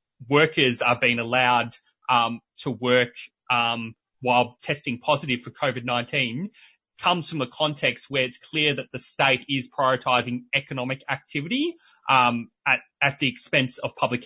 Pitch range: 125-150 Hz